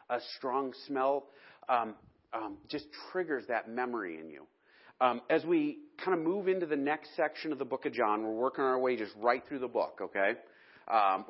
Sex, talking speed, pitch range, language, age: male, 195 wpm, 120-140 Hz, English, 40-59